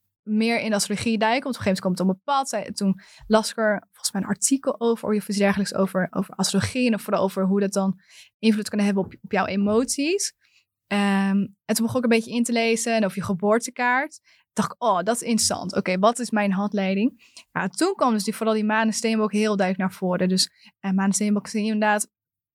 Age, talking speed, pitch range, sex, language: 20-39, 235 wpm, 195-225 Hz, female, Dutch